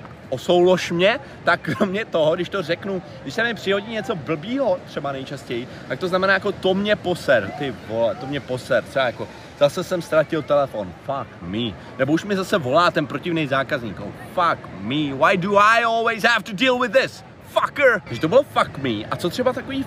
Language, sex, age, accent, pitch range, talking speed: Czech, male, 30-49, native, 140-210 Hz, 200 wpm